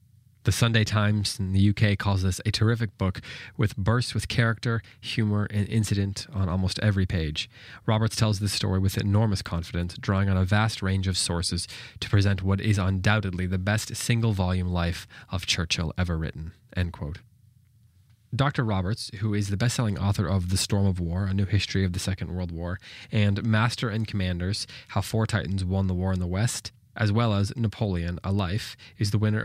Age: 20-39